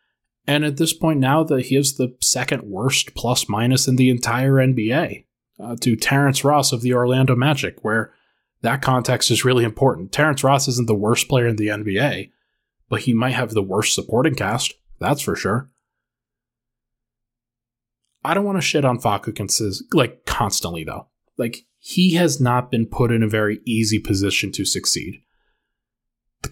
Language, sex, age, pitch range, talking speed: English, male, 20-39, 115-135 Hz, 170 wpm